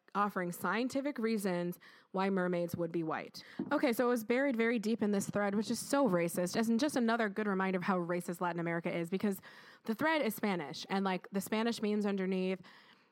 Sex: female